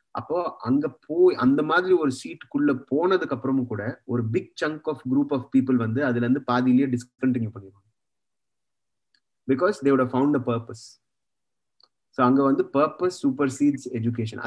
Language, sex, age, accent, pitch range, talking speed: Tamil, male, 30-49, native, 120-145 Hz, 90 wpm